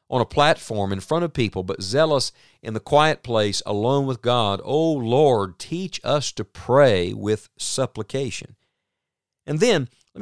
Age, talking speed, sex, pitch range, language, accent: 50-69, 160 wpm, male, 105-150 Hz, English, American